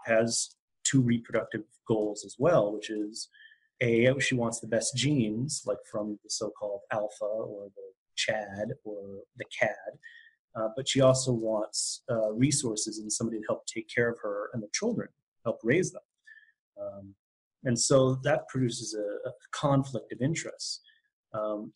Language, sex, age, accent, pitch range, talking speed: English, male, 30-49, American, 110-130 Hz, 155 wpm